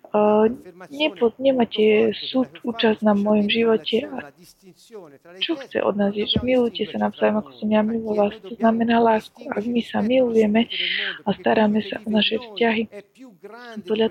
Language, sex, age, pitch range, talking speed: Slovak, female, 20-39, 205-235 Hz, 145 wpm